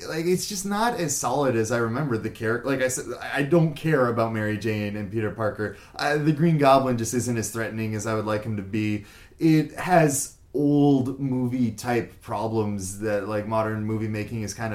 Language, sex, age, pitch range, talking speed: English, male, 20-39, 105-135 Hz, 195 wpm